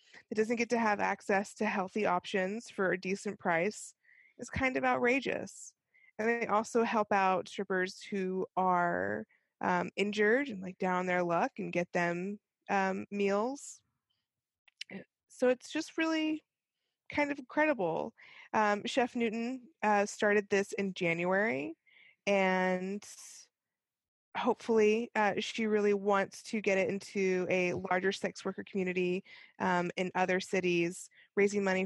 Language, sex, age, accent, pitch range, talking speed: English, female, 20-39, American, 185-225 Hz, 135 wpm